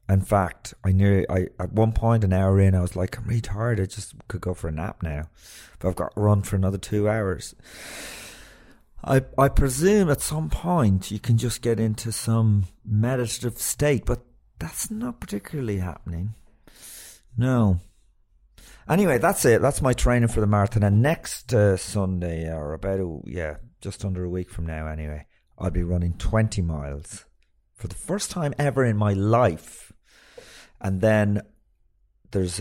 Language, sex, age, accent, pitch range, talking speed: English, male, 40-59, British, 90-120 Hz, 170 wpm